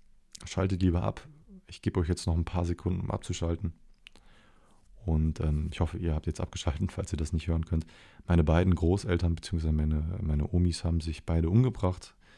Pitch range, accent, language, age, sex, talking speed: 85-100 Hz, German, German, 30-49, male, 185 wpm